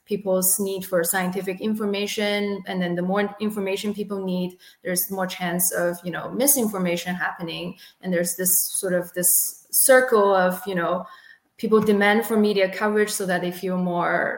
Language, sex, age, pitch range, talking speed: English, female, 20-39, 185-220 Hz, 165 wpm